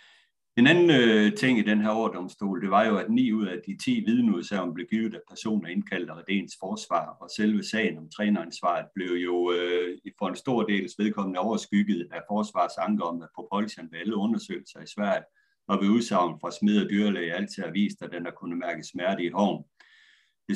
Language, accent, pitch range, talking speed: Danish, native, 90-115 Hz, 205 wpm